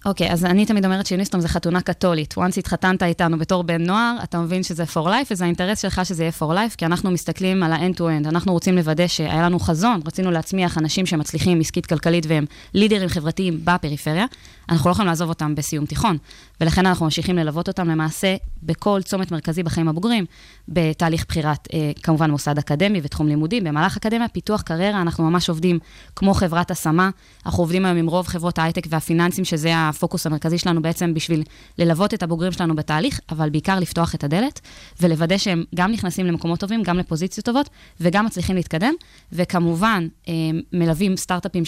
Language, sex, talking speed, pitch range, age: Hebrew, female, 175 wpm, 165-195 Hz, 20-39